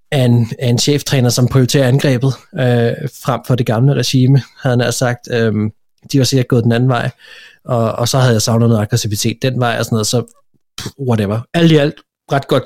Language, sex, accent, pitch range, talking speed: Danish, male, native, 115-130 Hz, 220 wpm